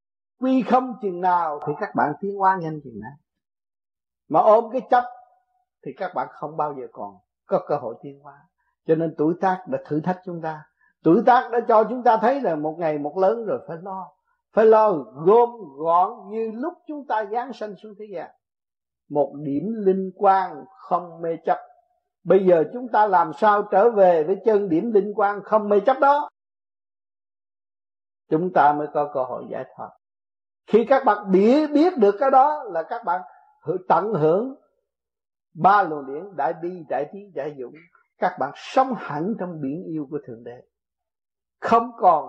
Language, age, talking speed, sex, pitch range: Vietnamese, 50-69, 185 wpm, male, 155-230 Hz